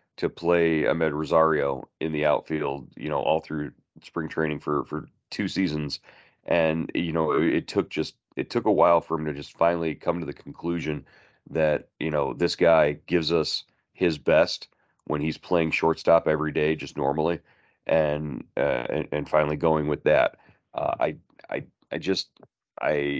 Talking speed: 175 wpm